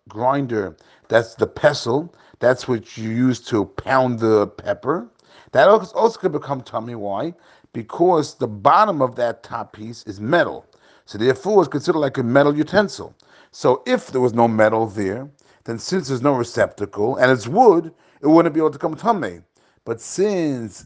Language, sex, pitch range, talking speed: English, male, 115-150 Hz, 170 wpm